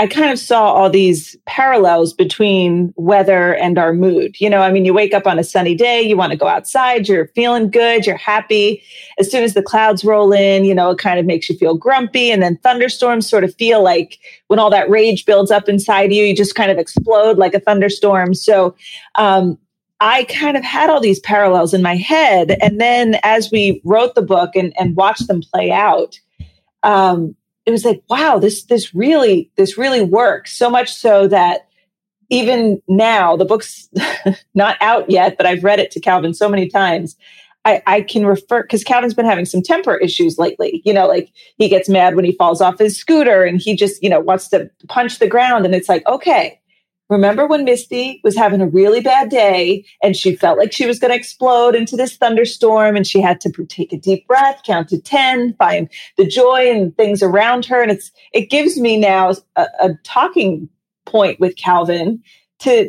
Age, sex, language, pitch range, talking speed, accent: 30-49, female, English, 185-235 Hz, 210 wpm, American